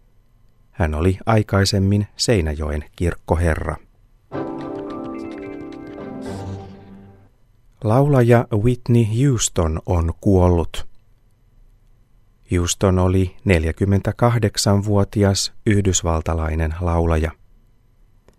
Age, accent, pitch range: 30-49, native, 95-115 Hz